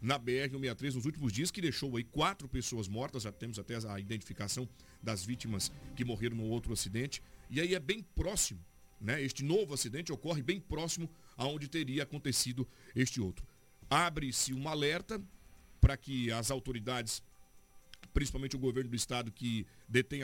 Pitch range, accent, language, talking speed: 115-150 Hz, Brazilian, Portuguese, 160 wpm